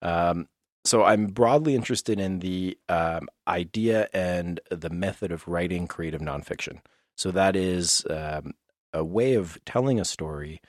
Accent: American